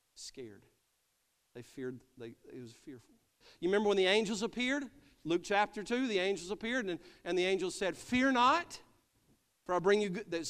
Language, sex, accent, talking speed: English, male, American, 185 wpm